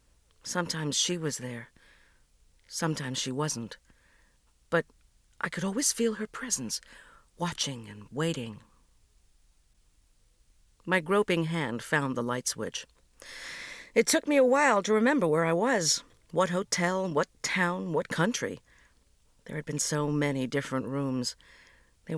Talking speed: 130 wpm